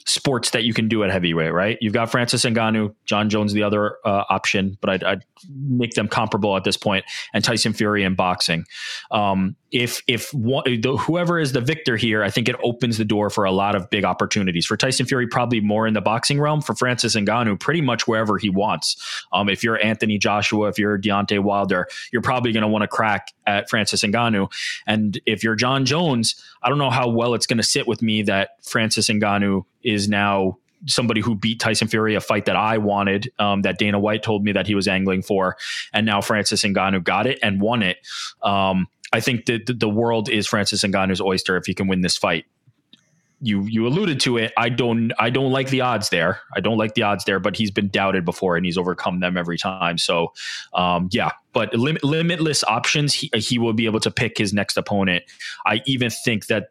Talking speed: 220 wpm